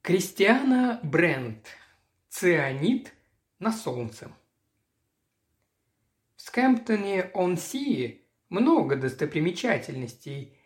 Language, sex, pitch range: Russian, male, 140-215 Hz